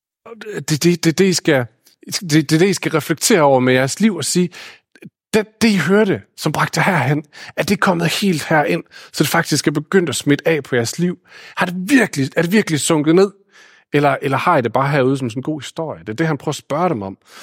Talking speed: 245 wpm